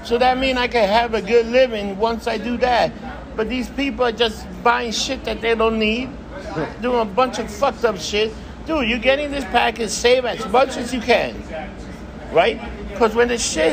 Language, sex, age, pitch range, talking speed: English, male, 60-79, 230-280 Hz, 205 wpm